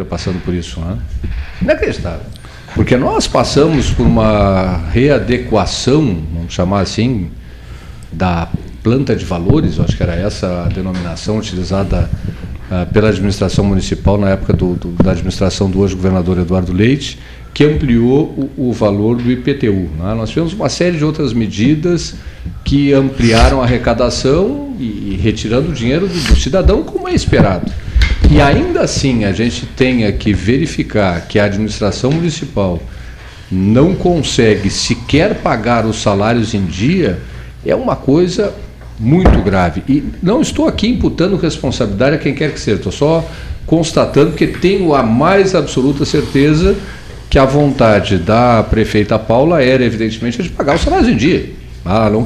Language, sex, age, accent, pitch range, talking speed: Portuguese, male, 40-59, Brazilian, 95-135 Hz, 150 wpm